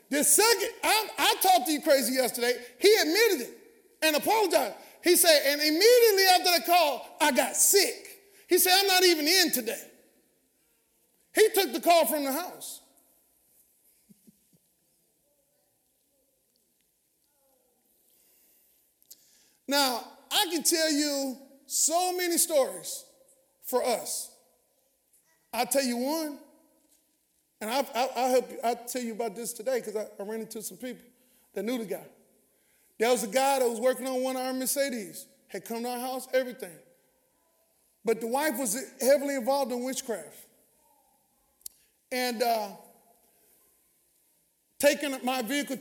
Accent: American